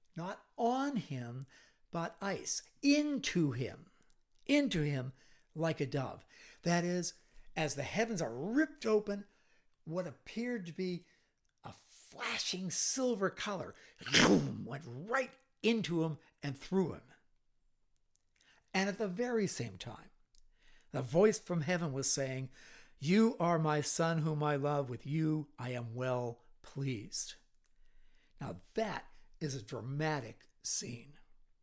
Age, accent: 60-79, American